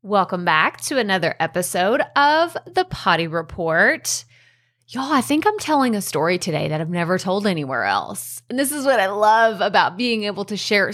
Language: English